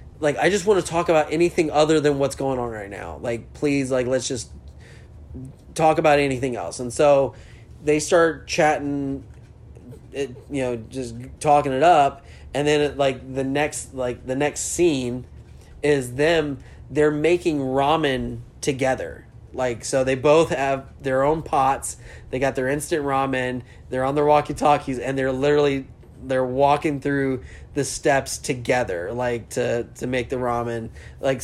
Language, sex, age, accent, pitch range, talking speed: English, male, 20-39, American, 120-145 Hz, 155 wpm